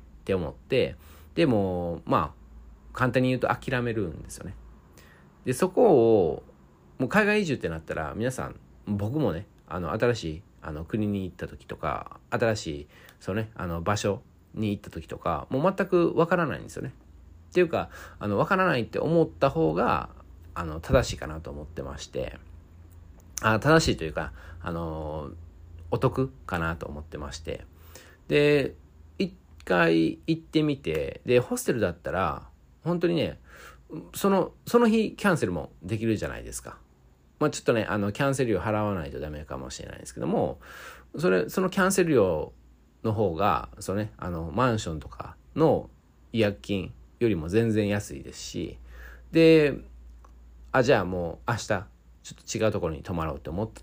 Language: Japanese